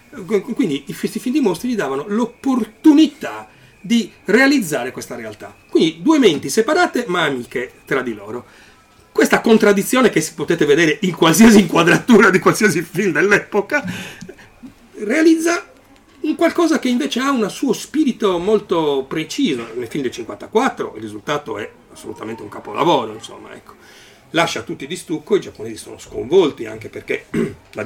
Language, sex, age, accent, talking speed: Italian, male, 40-59, native, 145 wpm